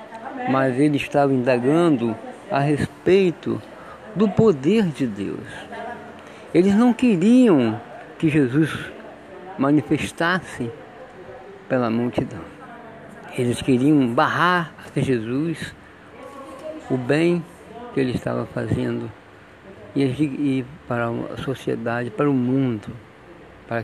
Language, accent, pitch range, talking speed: Portuguese, Brazilian, 120-165 Hz, 95 wpm